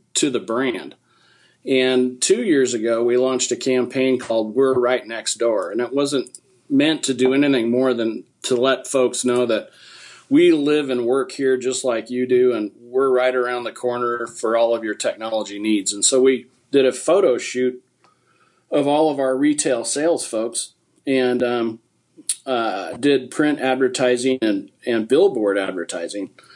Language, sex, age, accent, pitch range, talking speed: English, male, 40-59, American, 120-135 Hz, 170 wpm